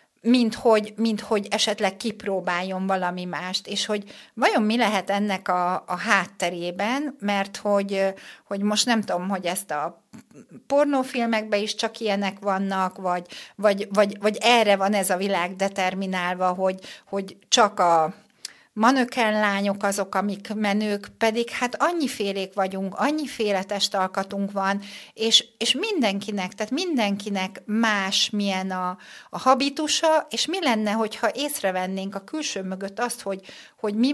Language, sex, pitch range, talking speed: Hungarian, female, 195-235 Hz, 135 wpm